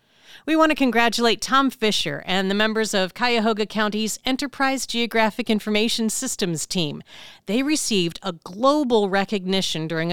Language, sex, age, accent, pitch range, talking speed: English, female, 40-59, American, 190-250 Hz, 135 wpm